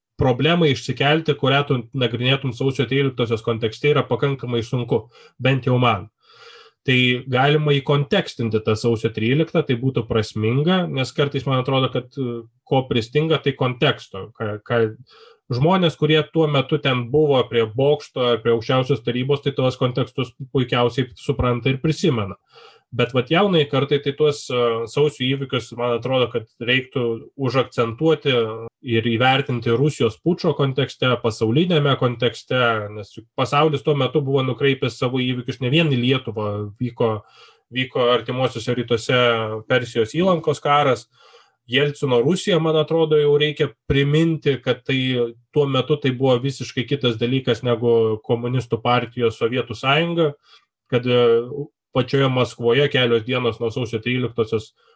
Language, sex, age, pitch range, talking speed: English, male, 20-39, 120-145 Hz, 130 wpm